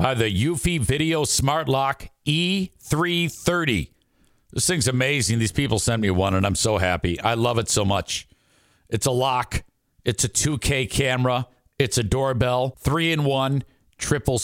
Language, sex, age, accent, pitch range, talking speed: English, male, 50-69, American, 115-160 Hz, 160 wpm